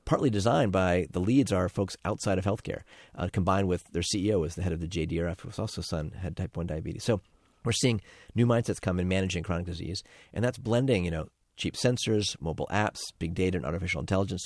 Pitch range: 85-105 Hz